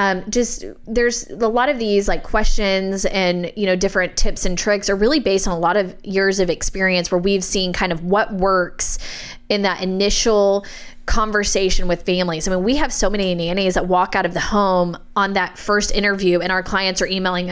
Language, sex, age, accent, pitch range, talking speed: English, female, 20-39, American, 185-220 Hz, 210 wpm